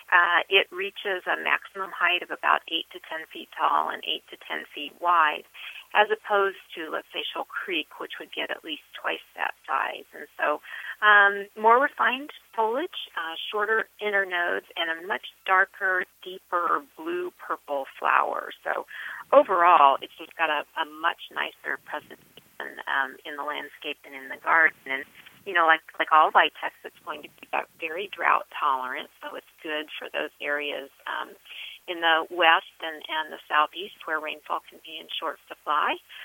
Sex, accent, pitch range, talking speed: female, American, 165-220 Hz, 175 wpm